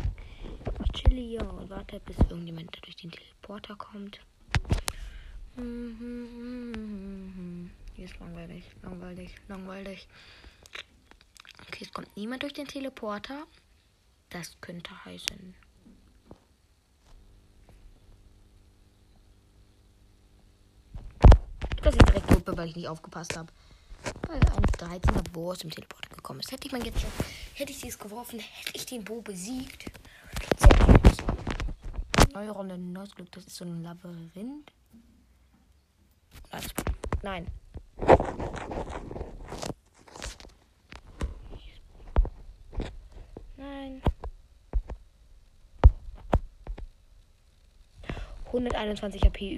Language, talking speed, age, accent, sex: English, 90 wpm, 20-39, German, female